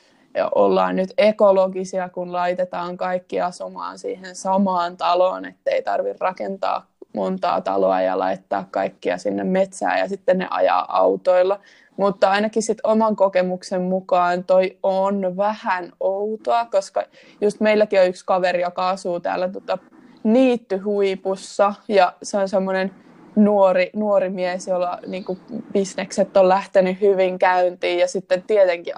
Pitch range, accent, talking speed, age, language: 180-200 Hz, native, 135 wpm, 20-39, Finnish